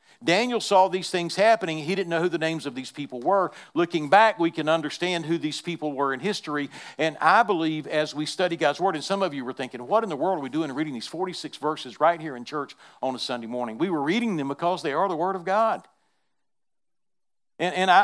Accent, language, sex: American, English, male